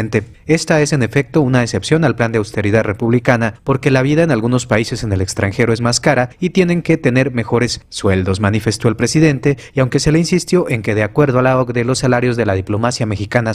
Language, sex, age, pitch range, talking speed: Spanish, male, 30-49, 110-145 Hz, 220 wpm